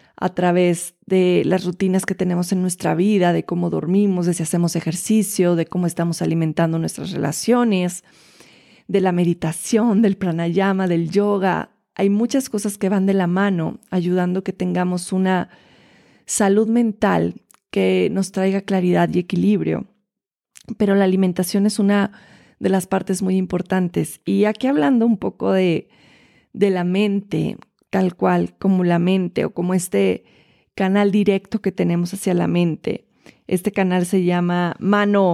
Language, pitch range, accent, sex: Spanish, 175-210 Hz, Mexican, female